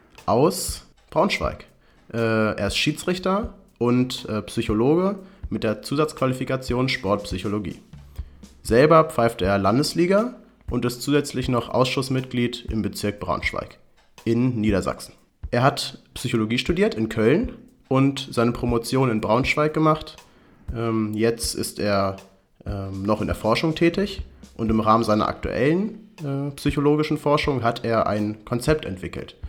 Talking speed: 115 wpm